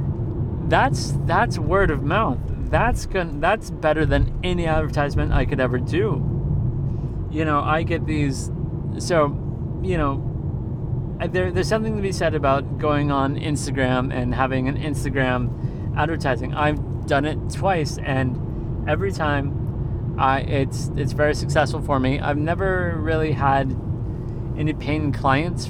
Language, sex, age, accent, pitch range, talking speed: English, male, 30-49, American, 120-145 Hz, 140 wpm